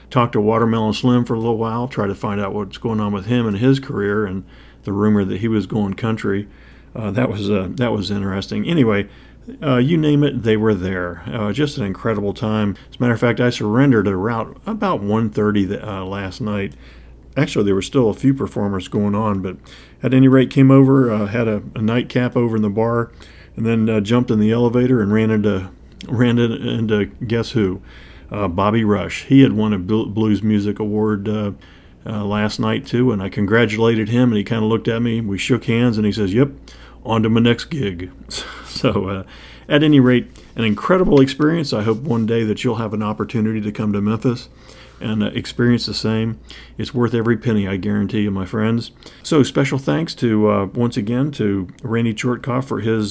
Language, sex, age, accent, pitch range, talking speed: English, male, 50-69, American, 100-120 Hz, 210 wpm